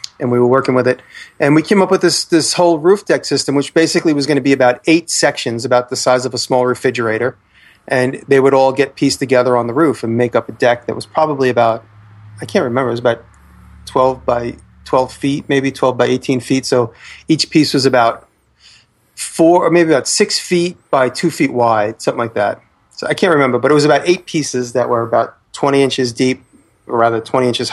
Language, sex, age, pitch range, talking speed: English, male, 30-49, 125-150 Hz, 225 wpm